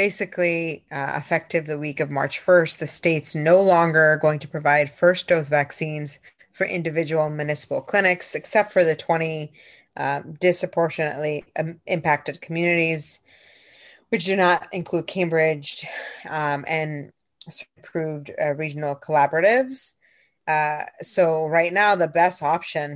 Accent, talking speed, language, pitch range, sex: American, 125 wpm, English, 145-170 Hz, female